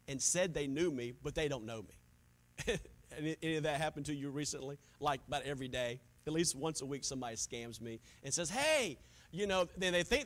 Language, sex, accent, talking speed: English, male, American, 215 wpm